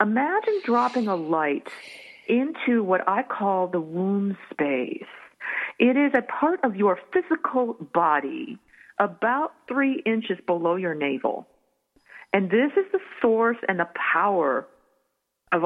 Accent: American